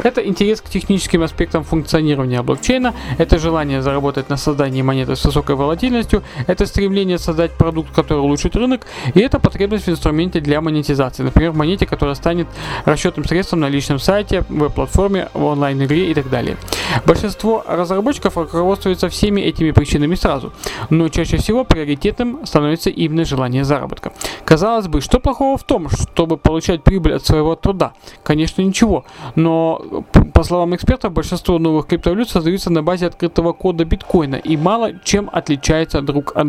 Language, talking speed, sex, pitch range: Russian, 155 wpm, male, 145-185 Hz